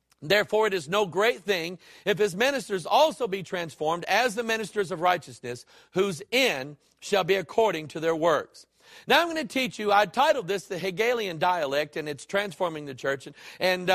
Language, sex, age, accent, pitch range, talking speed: English, male, 50-69, American, 170-220 Hz, 190 wpm